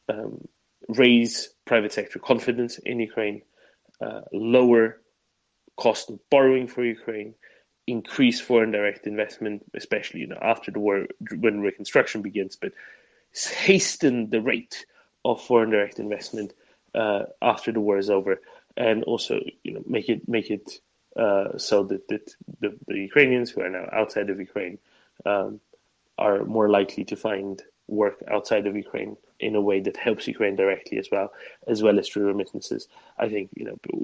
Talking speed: 160 wpm